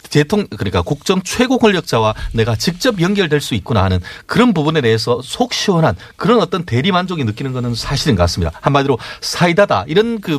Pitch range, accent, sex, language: 105-175 Hz, native, male, Korean